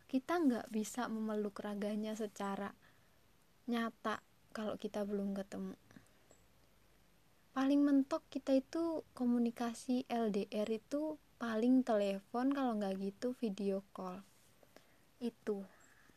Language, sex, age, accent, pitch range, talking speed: Indonesian, female, 20-39, native, 205-235 Hz, 95 wpm